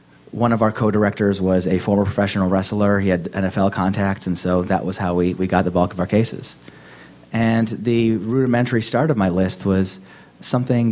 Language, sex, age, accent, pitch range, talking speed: English, male, 30-49, American, 90-105 Hz, 190 wpm